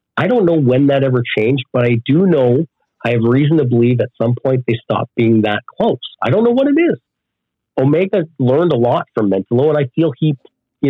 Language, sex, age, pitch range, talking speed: English, male, 40-59, 120-155 Hz, 225 wpm